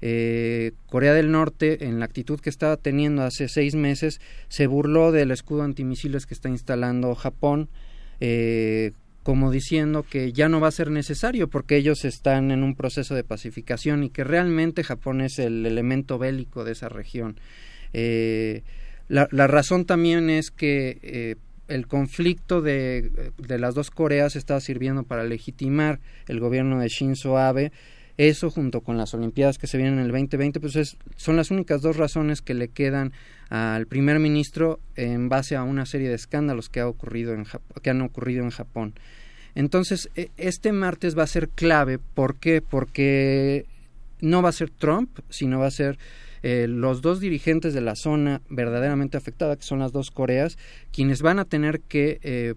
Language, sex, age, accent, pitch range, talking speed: Spanish, male, 40-59, Mexican, 125-150 Hz, 175 wpm